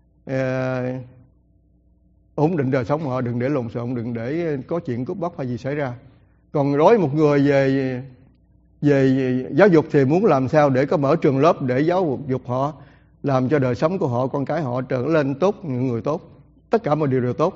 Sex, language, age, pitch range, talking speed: male, English, 60-79, 130-160 Hz, 215 wpm